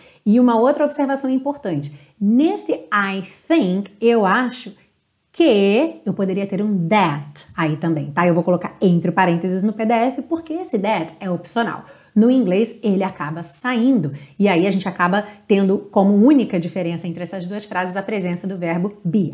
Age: 30-49